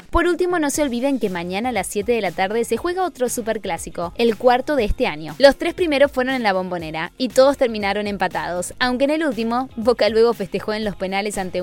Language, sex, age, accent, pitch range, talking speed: Spanish, female, 20-39, Argentinian, 195-275 Hz, 230 wpm